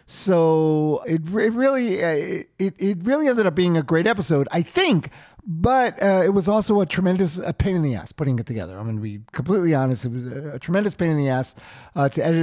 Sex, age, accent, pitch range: male, 50-69, American, 130-180 Hz